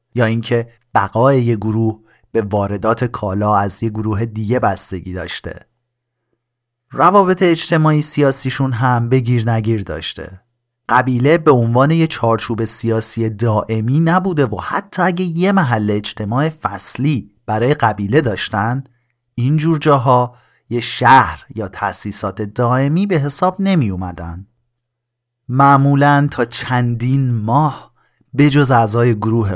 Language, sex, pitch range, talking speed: Persian, male, 110-135 Hz, 120 wpm